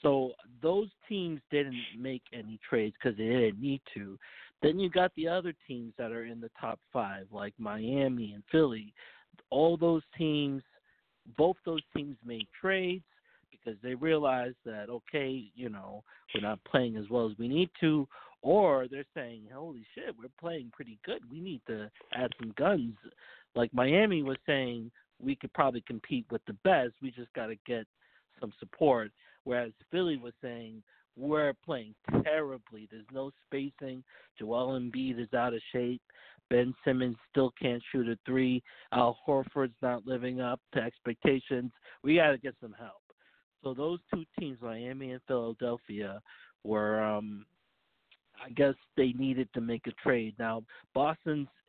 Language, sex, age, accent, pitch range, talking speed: English, male, 50-69, American, 115-145 Hz, 165 wpm